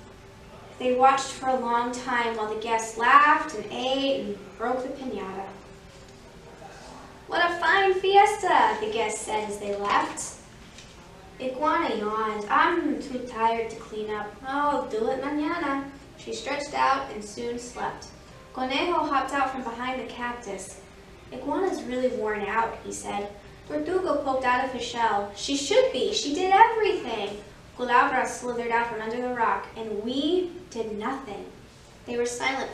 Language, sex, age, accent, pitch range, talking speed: English, female, 10-29, American, 225-285 Hz, 150 wpm